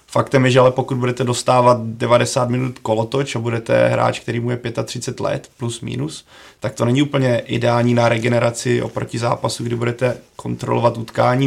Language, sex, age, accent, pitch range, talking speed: Czech, male, 30-49, native, 120-125 Hz, 175 wpm